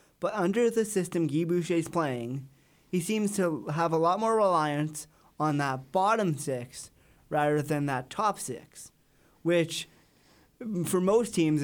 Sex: male